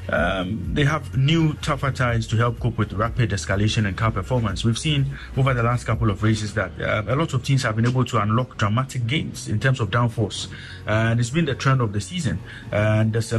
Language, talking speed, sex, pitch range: English, 230 wpm, male, 105-125 Hz